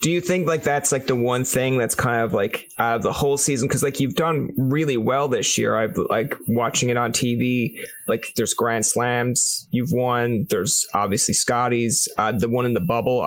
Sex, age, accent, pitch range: male, 30-49, American, 125-150 Hz